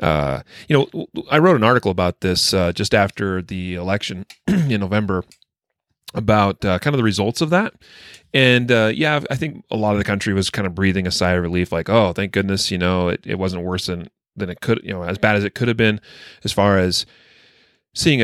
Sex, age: male, 30-49